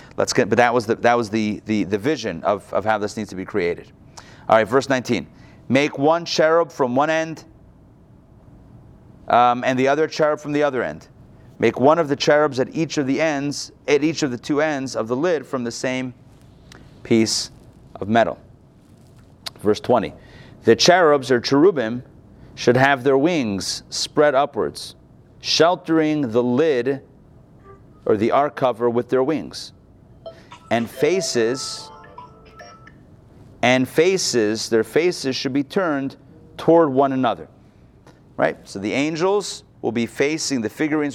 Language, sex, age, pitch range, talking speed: English, male, 30-49, 115-145 Hz, 150 wpm